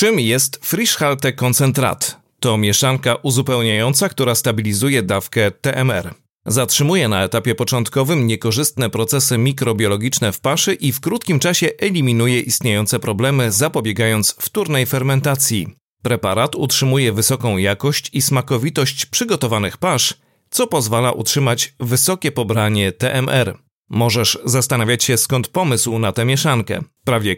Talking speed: 115 wpm